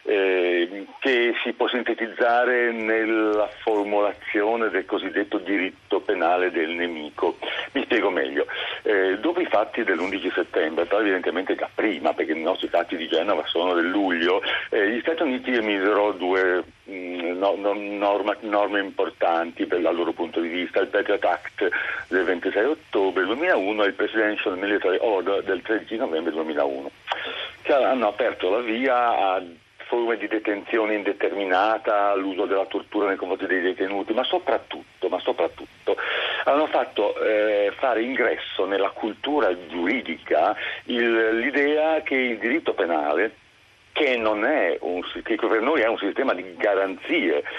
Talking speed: 145 wpm